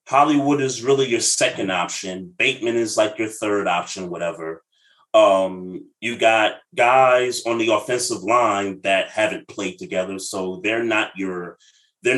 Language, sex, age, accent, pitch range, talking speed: English, male, 30-49, American, 100-140 Hz, 150 wpm